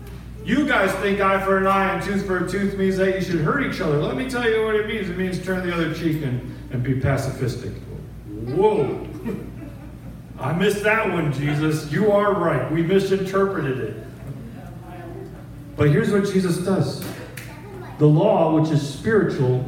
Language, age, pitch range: English, 40-59, 135-175 Hz